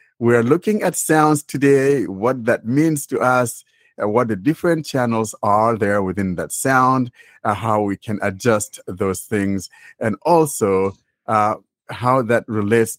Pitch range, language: 95-125 Hz, English